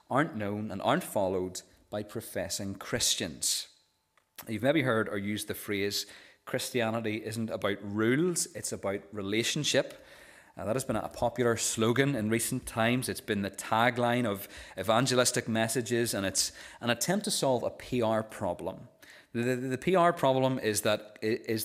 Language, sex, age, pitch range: English, male, 30-49, 105-140 Hz